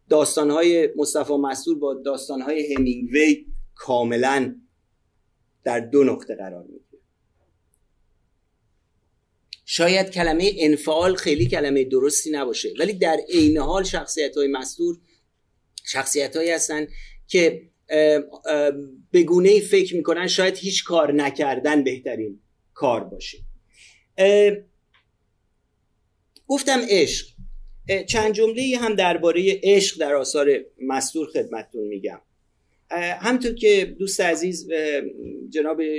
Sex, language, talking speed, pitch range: male, Persian, 100 wpm, 135-200 Hz